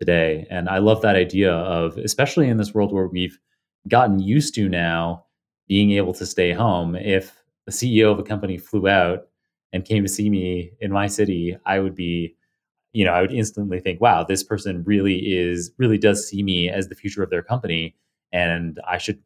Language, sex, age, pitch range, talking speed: English, male, 30-49, 90-115 Hz, 205 wpm